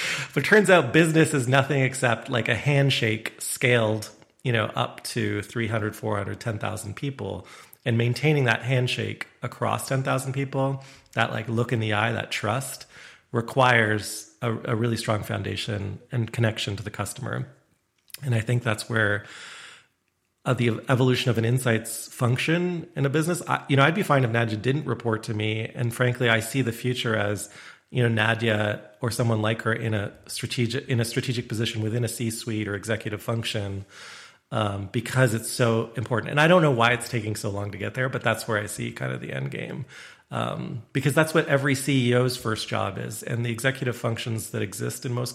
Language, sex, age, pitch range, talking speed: English, male, 30-49, 110-130 Hz, 190 wpm